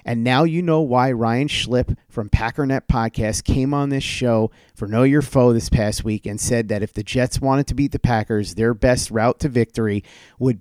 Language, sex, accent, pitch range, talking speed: English, male, American, 110-130 Hz, 215 wpm